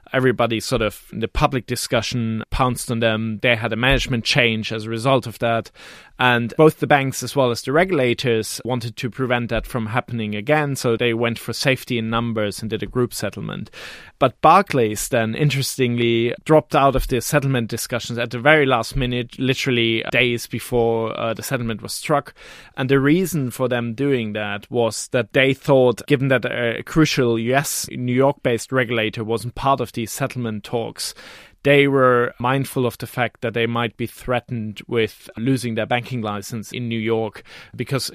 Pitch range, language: 115-130 Hz, English